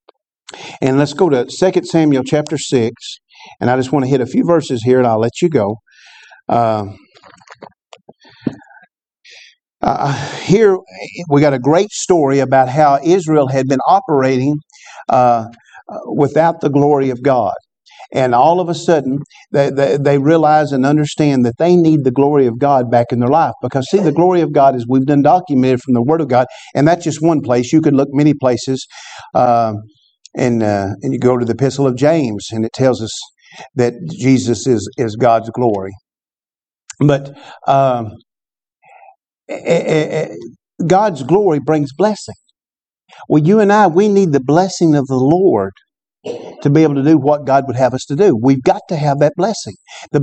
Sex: male